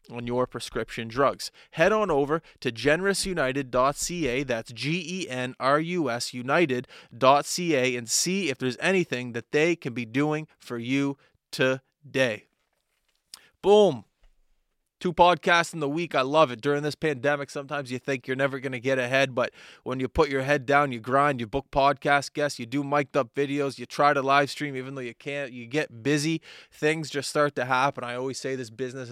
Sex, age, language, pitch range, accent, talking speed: male, 20-39, English, 120-145 Hz, American, 175 wpm